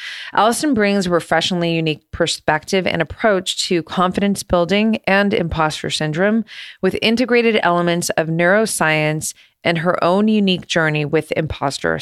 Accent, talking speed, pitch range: American, 130 wpm, 160-195 Hz